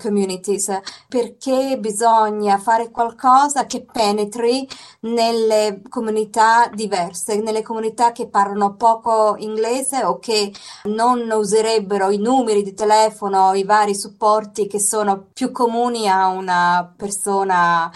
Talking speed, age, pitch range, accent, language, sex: 110 wpm, 20-39, 190-225 Hz, native, Italian, female